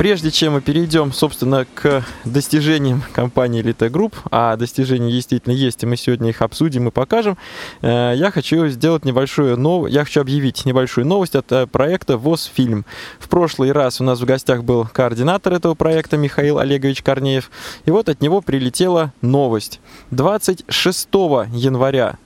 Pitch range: 125-160 Hz